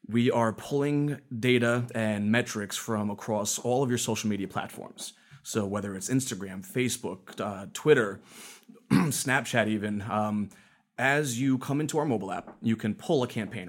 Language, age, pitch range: English, 30-49, 105-125 Hz